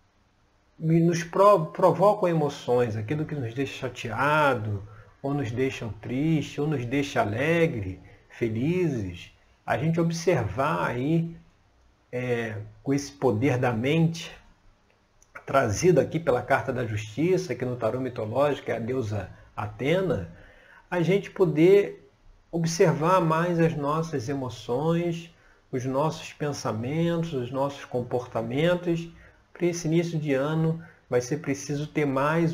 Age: 40-59